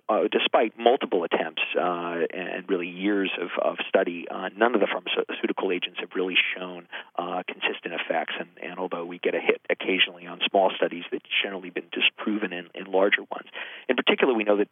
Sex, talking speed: male, 190 wpm